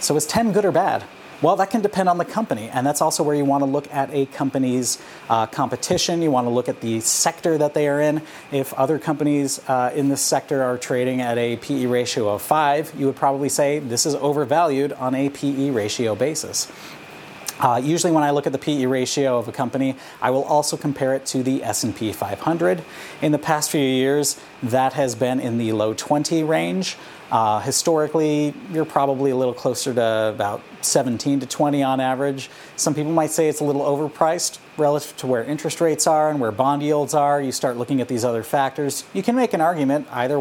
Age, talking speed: 30-49, 215 wpm